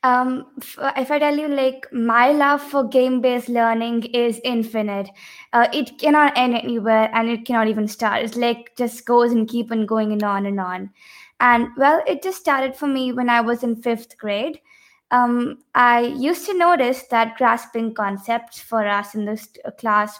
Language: English